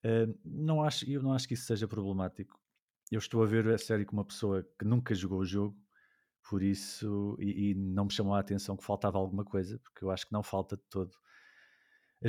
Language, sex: Portuguese, male